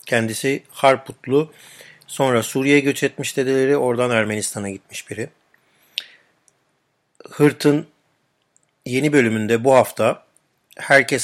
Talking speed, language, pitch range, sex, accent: 90 wpm, Turkish, 115-140 Hz, male, native